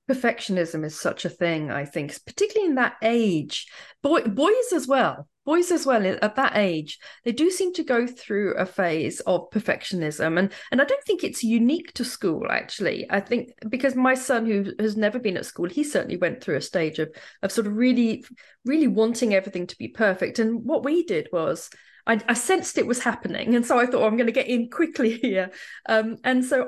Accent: British